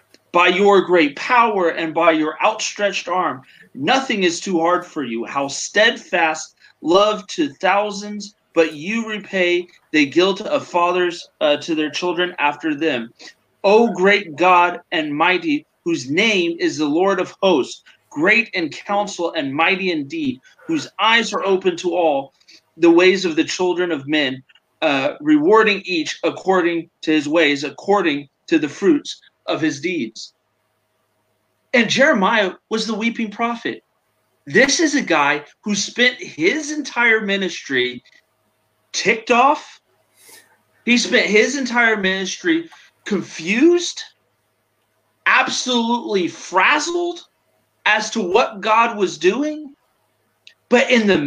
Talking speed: 130 wpm